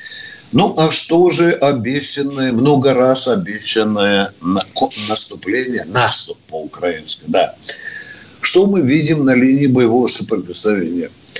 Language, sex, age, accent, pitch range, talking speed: Russian, male, 60-79, native, 115-180 Hz, 100 wpm